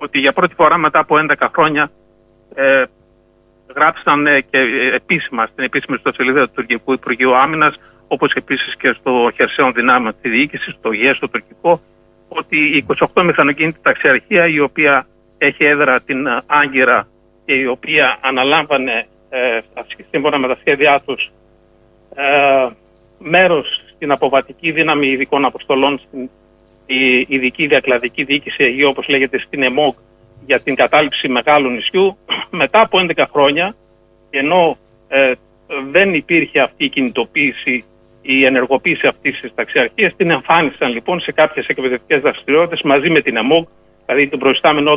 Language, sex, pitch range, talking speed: Greek, male, 120-155 Hz, 140 wpm